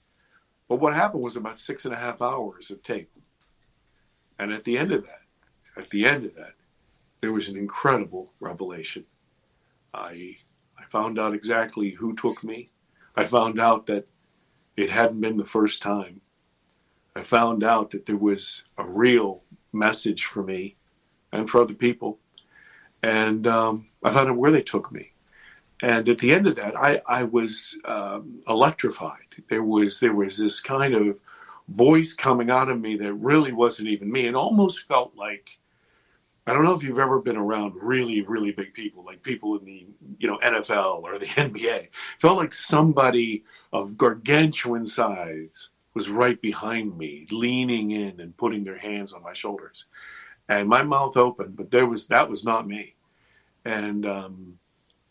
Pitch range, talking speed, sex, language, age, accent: 100-120 Hz, 170 wpm, male, English, 50-69, American